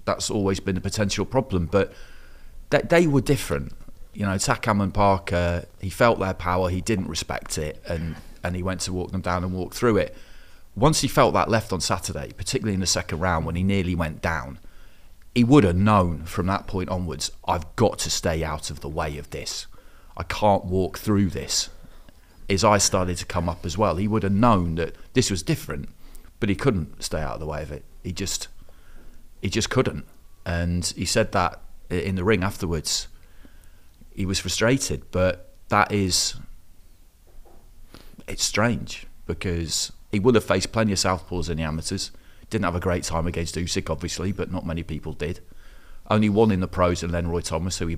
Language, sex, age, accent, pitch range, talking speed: English, male, 30-49, British, 85-100 Hz, 195 wpm